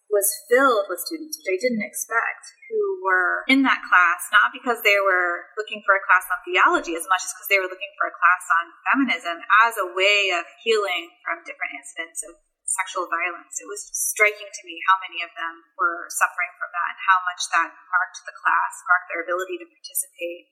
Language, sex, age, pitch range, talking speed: English, female, 20-39, 180-245 Hz, 205 wpm